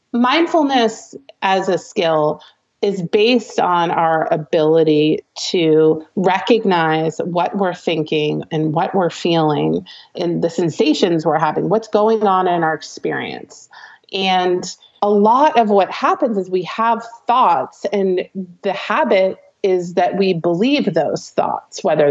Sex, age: female, 30-49